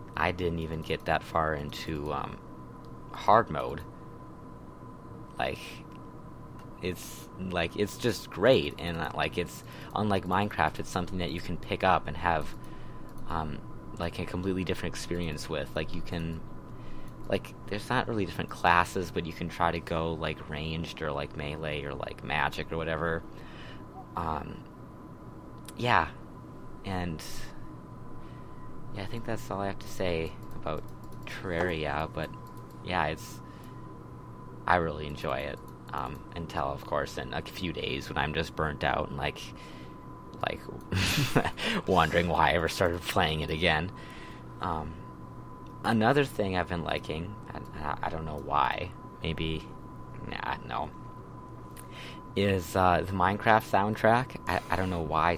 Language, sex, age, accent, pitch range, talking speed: English, male, 20-39, American, 75-90 Hz, 145 wpm